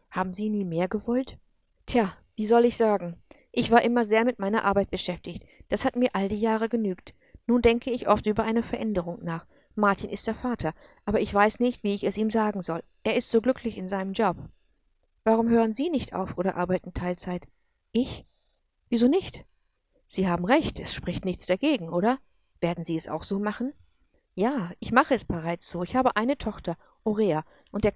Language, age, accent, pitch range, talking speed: English, 50-69, German, 180-235 Hz, 195 wpm